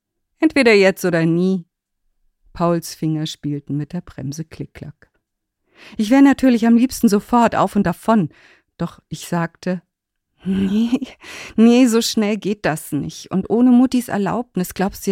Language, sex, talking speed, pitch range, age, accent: German, female, 145 wpm, 165-225 Hz, 50-69, German